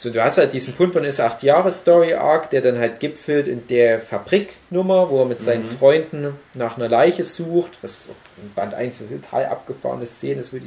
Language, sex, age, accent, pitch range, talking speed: German, male, 30-49, German, 120-160 Hz, 210 wpm